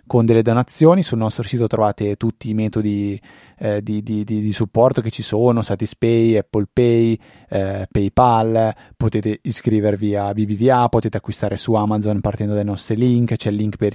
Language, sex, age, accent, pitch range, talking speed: Italian, male, 30-49, native, 105-125 Hz, 170 wpm